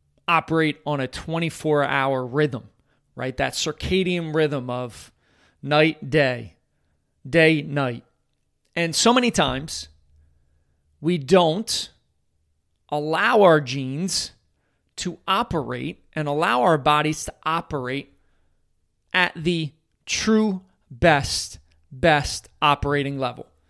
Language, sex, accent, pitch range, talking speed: English, male, American, 125-170 Hz, 95 wpm